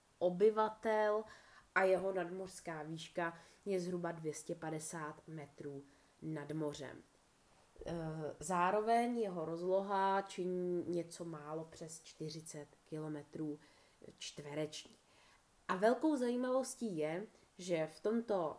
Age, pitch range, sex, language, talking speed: 20-39, 155-195 Hz, female, Czech, 90 wpm